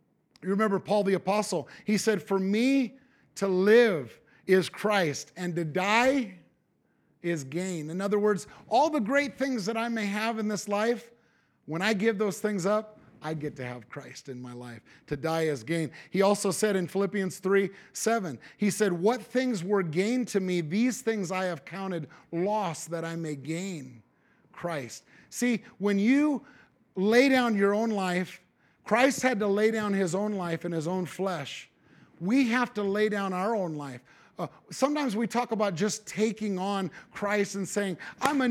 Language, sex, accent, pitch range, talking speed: English, male, American, 180-225 Hz, 180 wpm